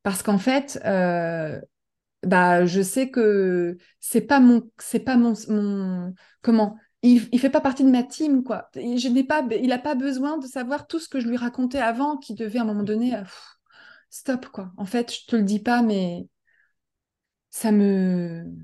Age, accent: 30-49, French